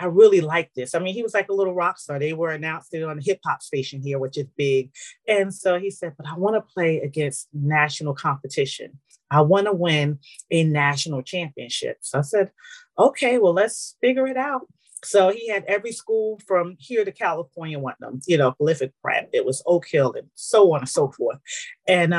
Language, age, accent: English, 30-49, American